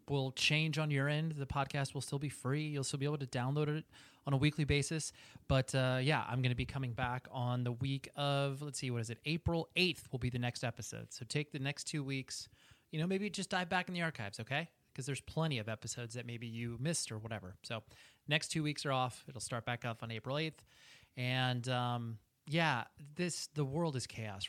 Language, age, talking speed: English, 30-49, 235 wpm